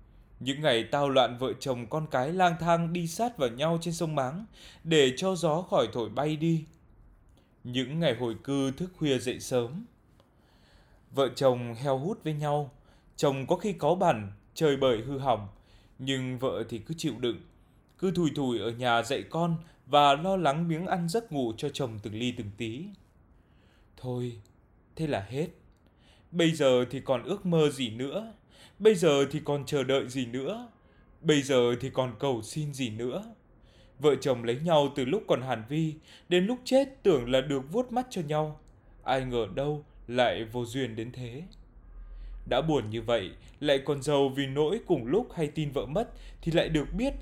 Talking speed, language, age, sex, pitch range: 185 wpm, Vietnamese, 20-39, male, 125-165 Hz